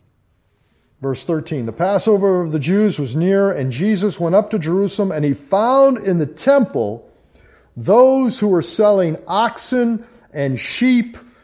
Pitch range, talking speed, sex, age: 160-220 Hz, 145 wpm, male, 50-69